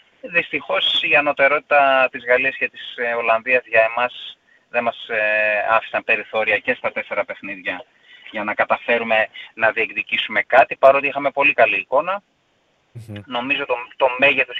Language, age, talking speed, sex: Greek, 20-39, 140 wpm, male